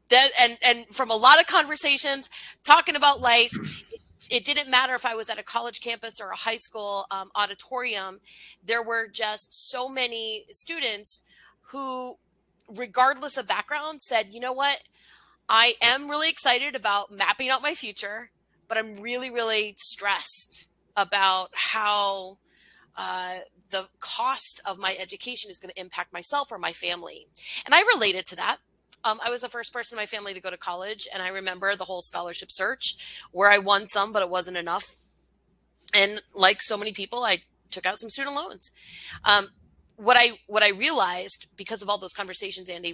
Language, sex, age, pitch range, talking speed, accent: English, female, 30-49, 190-255 Hz, 180 wpm, American